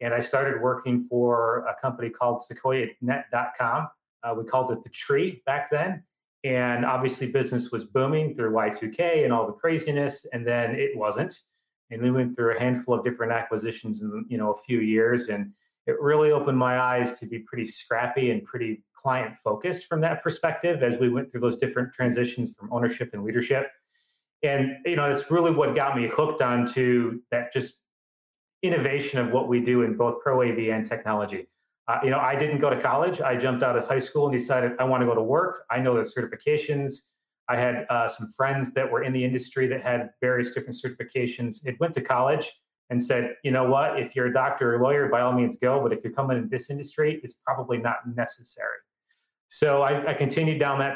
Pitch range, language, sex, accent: 120-145 Hz, English, male, American